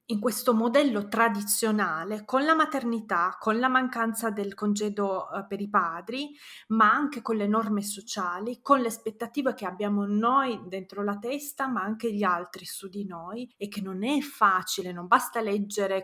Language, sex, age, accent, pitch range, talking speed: Italian, female, 30-49, native, 200-235 Hz, 170 wpm